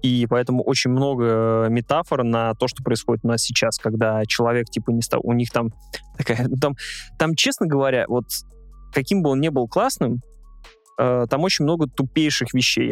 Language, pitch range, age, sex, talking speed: Russian, 125-165 Hz, 20-39, male, 175 wpm